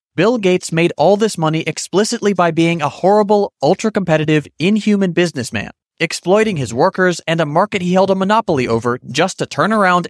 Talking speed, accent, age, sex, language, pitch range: 170 wpm, American, 30-49, male, English, 140-200 Hz